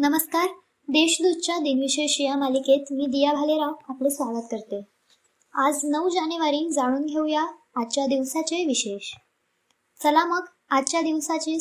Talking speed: 120 wpm